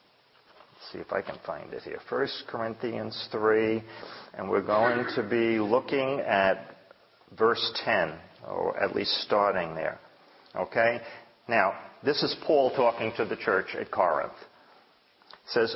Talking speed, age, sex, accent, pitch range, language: 140 wpm, 50-69, male, American, 110-145 Hz, English